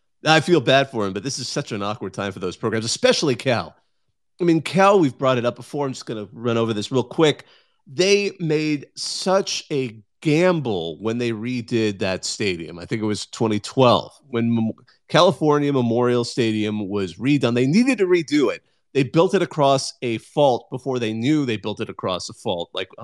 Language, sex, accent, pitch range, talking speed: English, male, American, 115-155 Hz, 200 wpm